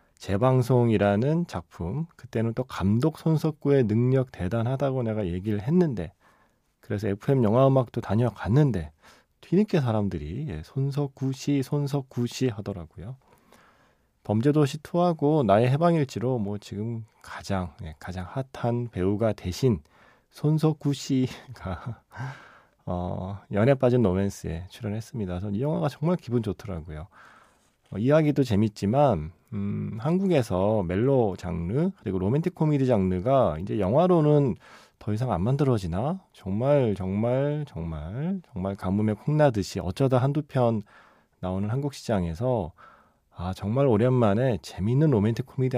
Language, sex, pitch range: Korean, male, 95-140 Hz